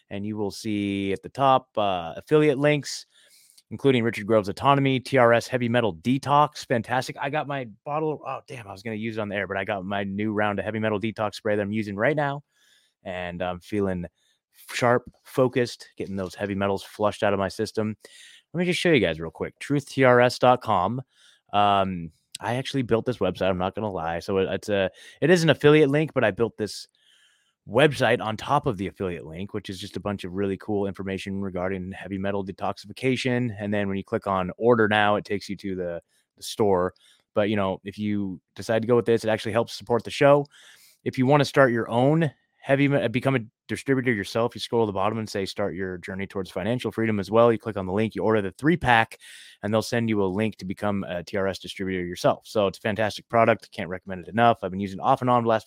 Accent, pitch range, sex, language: American, 100-125 Hz, male, English